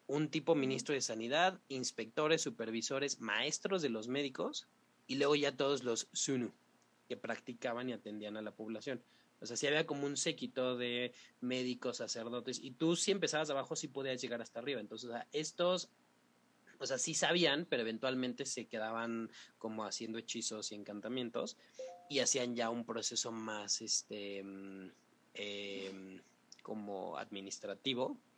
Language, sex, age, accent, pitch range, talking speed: Spanish, male, 30-49, Mexican, 105-140 Hz, 145 wpm